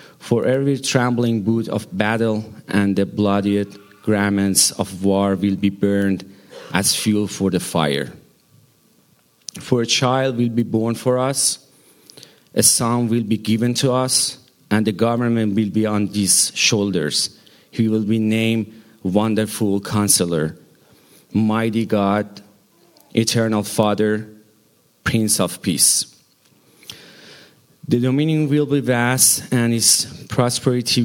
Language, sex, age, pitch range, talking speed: English, male, 40-59, 100-120 Hz, 125 wpm